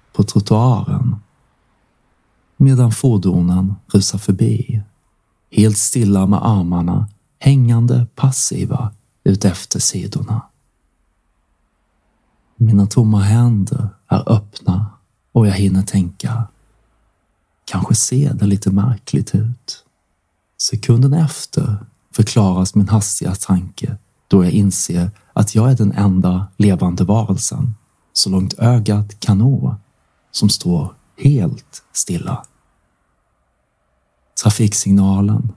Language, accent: Swedish, native